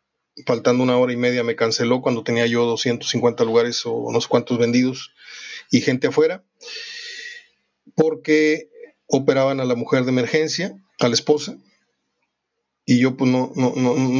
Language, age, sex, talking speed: Spanish, 30-49, male, 150 wpm